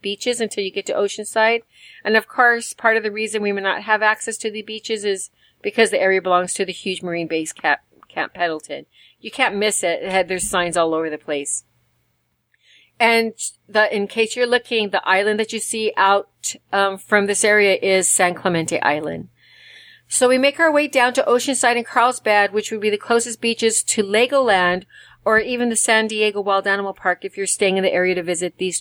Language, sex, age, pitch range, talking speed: English, female, 40-59, 185-225 Hz, 205 wpm